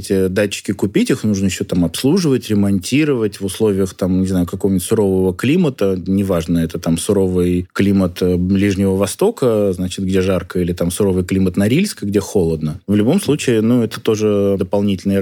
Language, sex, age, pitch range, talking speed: Russian, male, 20-39, 95-125 Hz, 160 wpm